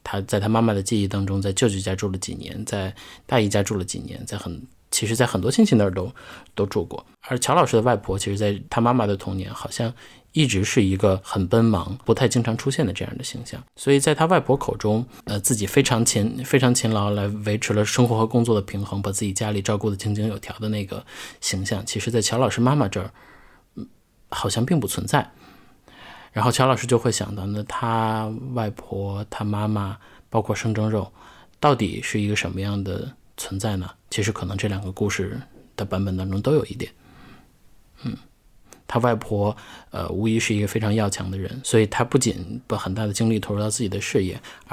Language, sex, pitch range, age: Chinese, male, 100-120 Hz, 20-39